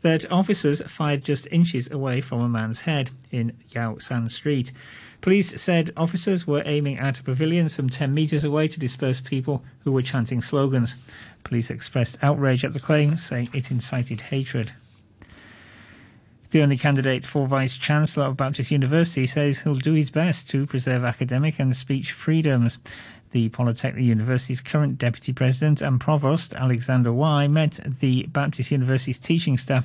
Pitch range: 125-150 Hz